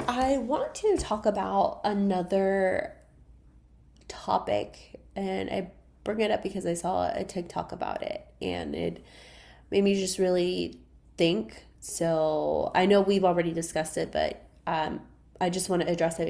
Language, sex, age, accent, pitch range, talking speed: English, female, 20-39, American, 155-190 Hz, 150 wpm